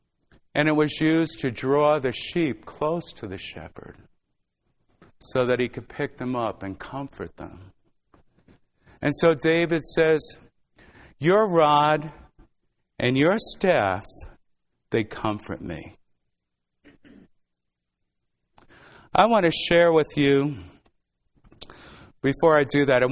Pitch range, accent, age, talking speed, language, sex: 100-145 Hz, American, 50-69, 115 wpm, English, male